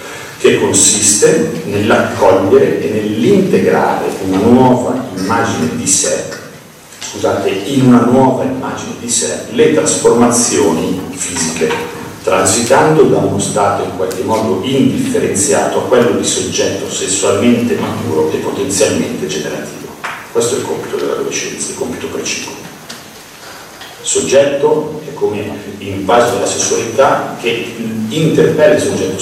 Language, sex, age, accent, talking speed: Italian, male, 50-69, native, 115 wpm